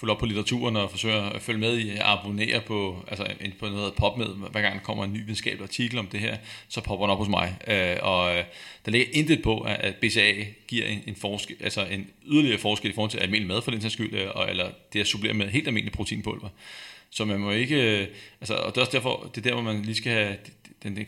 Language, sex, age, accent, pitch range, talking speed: Danish, male, 30-49, native, 100-115 Hz, 245 wpm